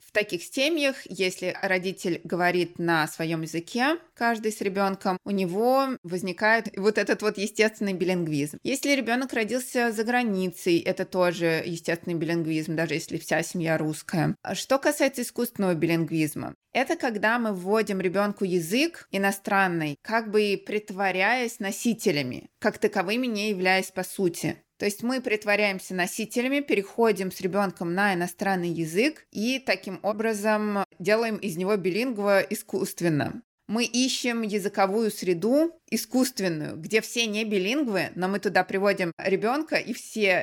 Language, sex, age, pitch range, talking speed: Russian, female, 20-39, 180-225 Hz, 135 wpm